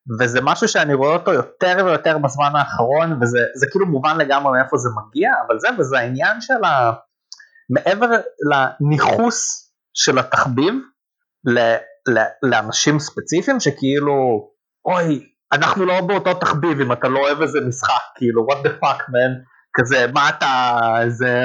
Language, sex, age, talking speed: Hebrew, male, 30-49, 140 wpm